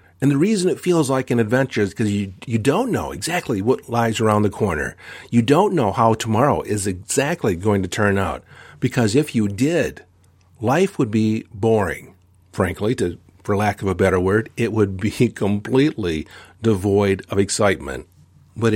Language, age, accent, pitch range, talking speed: English, 50-69, American, 95-125 Hz, 175 wpm